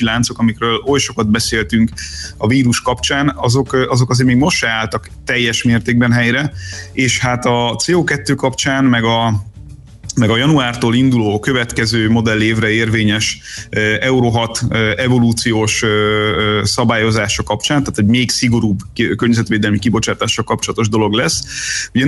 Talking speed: 130 wpm